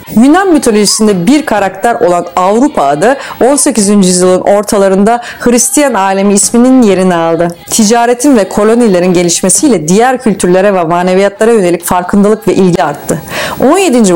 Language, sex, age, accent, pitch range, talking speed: Turkish, female, 40-59, native, 180-240 Hz, 125 wpm